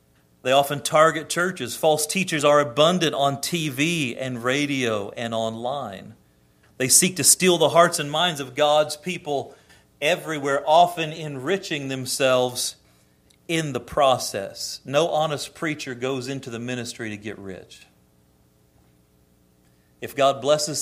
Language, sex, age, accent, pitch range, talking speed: English, male, 40-59, American, 115-150 Hz, 130 wpm